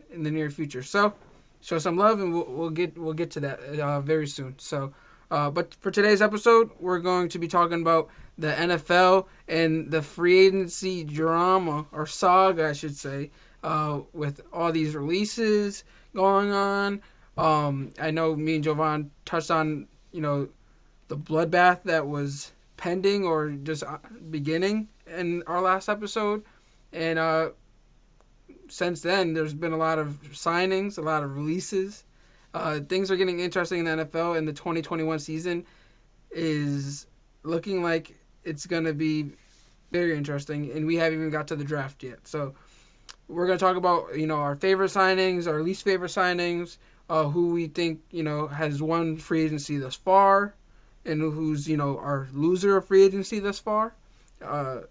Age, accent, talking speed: 20-39, American, 170 wpm